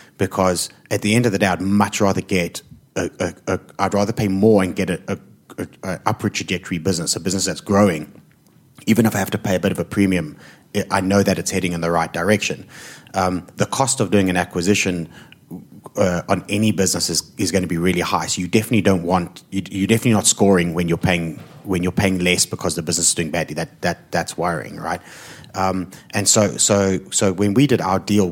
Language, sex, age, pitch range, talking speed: English, male, 30-49, 90-105 Hz, 230 wpm